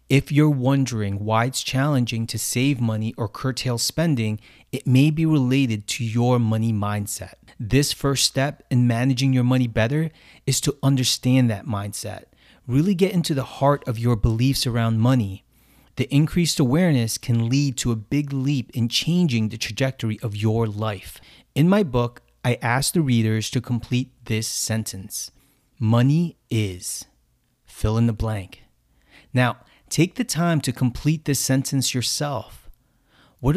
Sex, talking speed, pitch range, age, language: male, 155 wpm, 115-140 Hz, 30-49, English